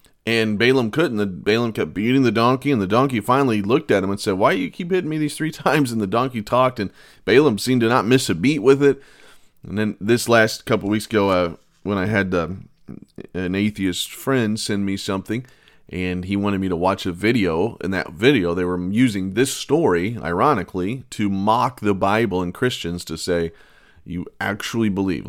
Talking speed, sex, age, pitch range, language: 205 wpm, male, 30-49, 90-115 Hz, English